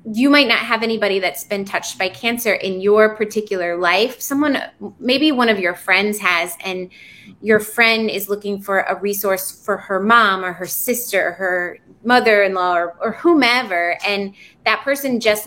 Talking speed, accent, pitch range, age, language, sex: 175 wpm, American, 185-220 Hz, 20-39, English, female